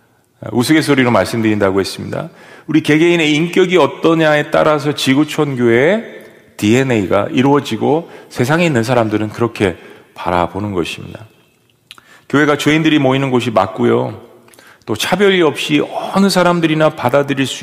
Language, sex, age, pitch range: Korean, male, 40-59, 115-160 Hz